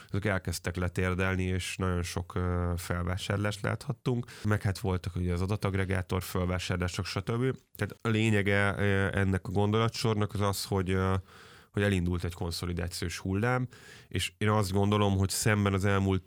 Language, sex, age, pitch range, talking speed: Hungarian, male, 10-29, 90-100 Hz, 135 wpm